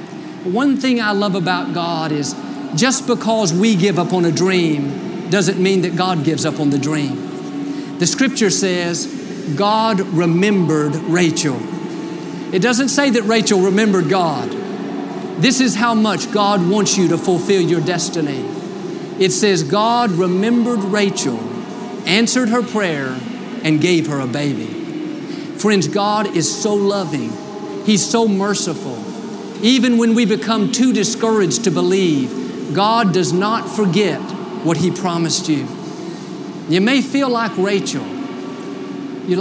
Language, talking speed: English, 140 wpm